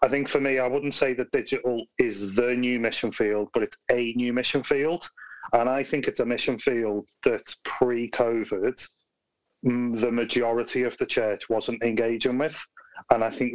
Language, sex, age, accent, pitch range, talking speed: English, male, 30-49, British, 110-125 Hz, 180 wpm